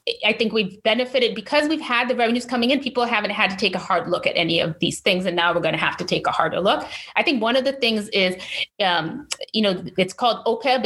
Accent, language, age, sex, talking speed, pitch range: American, English, 30-49, female, 265 wpm, 185-225 Hz